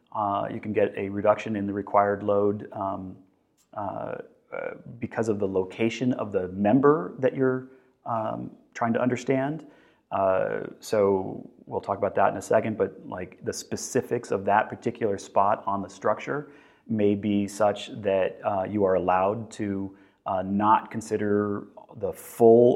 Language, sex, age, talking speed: English, male, 30-49, 160 wpm